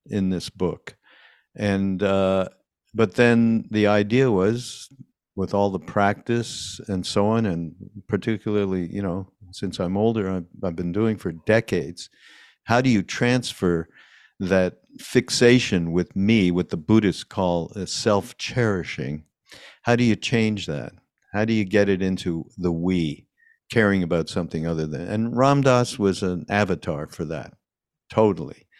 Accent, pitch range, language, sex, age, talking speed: American, 90-110 Hz, English, male, 50-69, 145 wpm